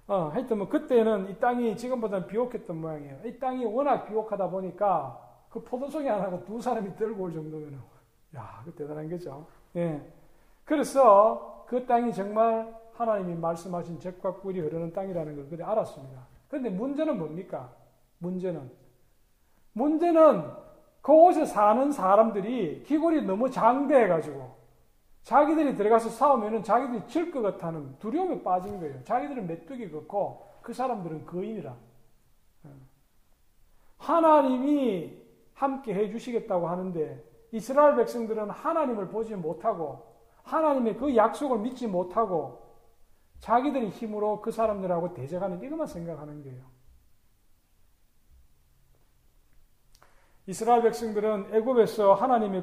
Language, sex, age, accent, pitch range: Korean, male, 40-59, native, 170-250 Hz